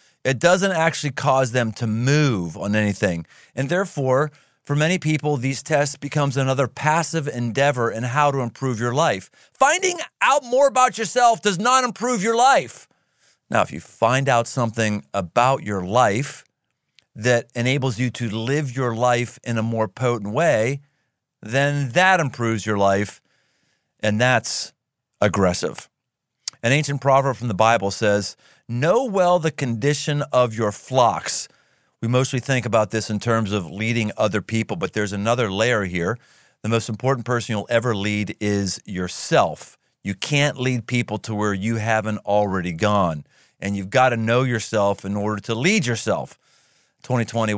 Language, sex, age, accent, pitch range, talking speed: English, male, 40-59, American, 105-140 Hz, 160 wpm